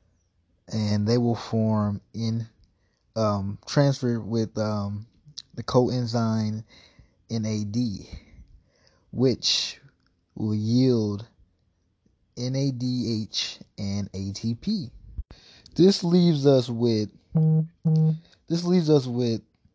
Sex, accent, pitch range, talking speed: male, American, 110-155 Hz, 80 wpm